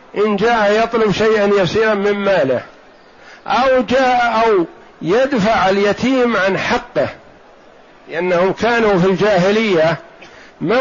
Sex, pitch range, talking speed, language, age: male, 185-220 Hz, 105 wpm, Arabic, 60-79